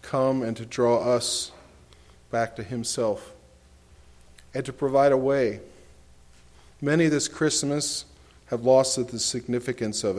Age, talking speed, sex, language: 40-59, 125 wpm, male, English